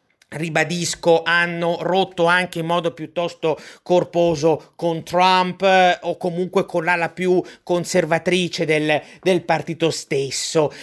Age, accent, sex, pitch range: 30-49, native, male, 155-185 Hz